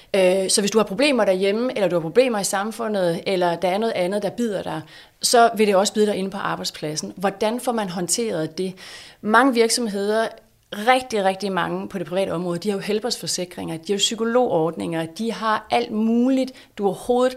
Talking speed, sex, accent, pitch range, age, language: 195 wpm, female, native, 180-225 Hz, 30-49, Danish